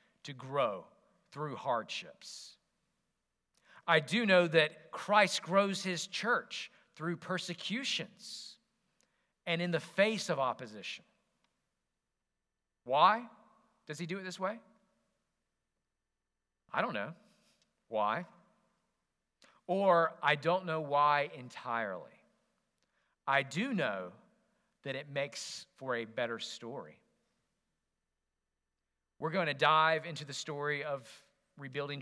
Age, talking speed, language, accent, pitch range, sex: 40-59, 105 wpm, English, American, 140-215 Hz, male